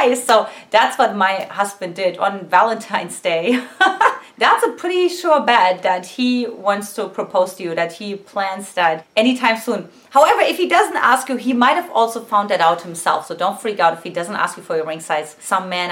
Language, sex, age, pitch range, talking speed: English, female, 30-49, 180-260 Hz, 210 wpm